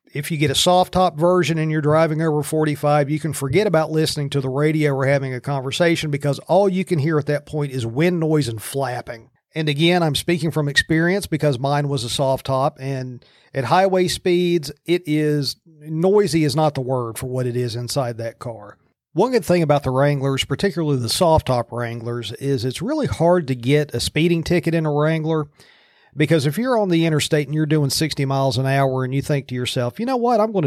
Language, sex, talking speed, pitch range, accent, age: English, male, 220 wpm, 130-170 Hz, American, 40-59